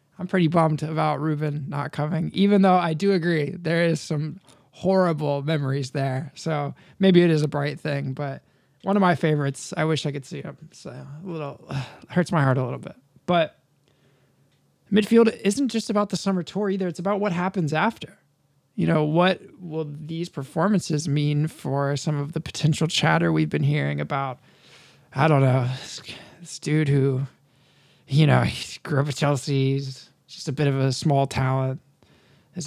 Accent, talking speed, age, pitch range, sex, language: American, 180 wpm, 20-39, 140-175 Hz, male, English